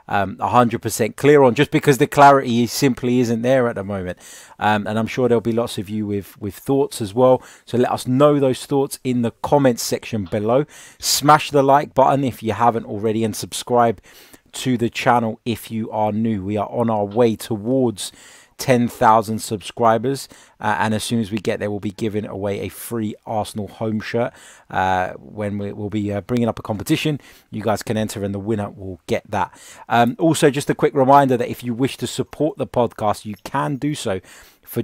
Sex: male